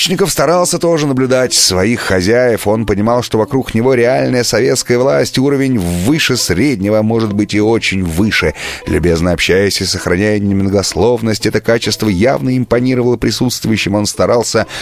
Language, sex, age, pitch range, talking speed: Russian, male, 30-49, 85-110 Hz, 135 wpm